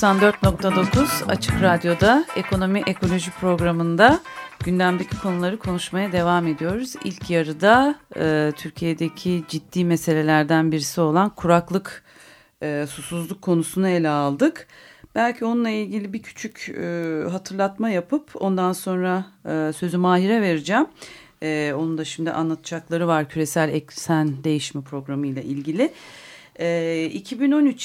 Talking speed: 115 wpm